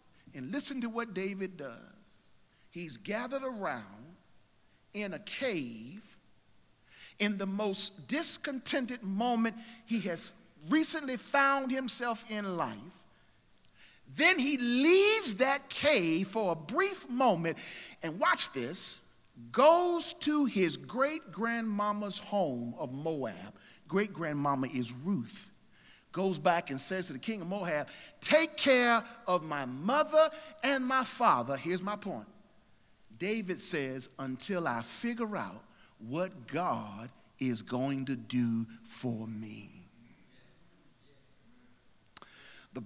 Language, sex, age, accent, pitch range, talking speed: English, male, 50-69, American, 160-260 Hz, 115 wpm